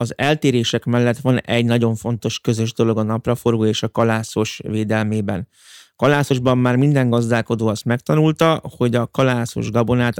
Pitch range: 115-130 Hz